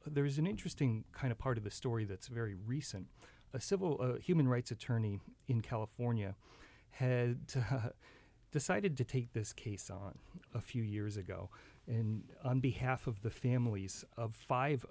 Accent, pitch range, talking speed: American, 100-125 Hz, 160 wpm